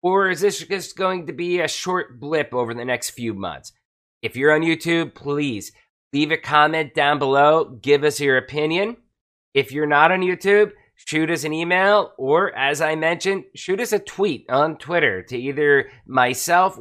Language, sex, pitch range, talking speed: English, male, 135-170 Hz, 180 wpm